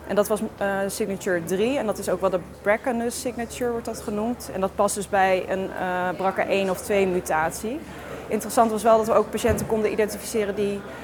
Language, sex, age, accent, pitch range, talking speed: Dutch, female, 20-39, Dutch, 180-215 Hz, 205 wpm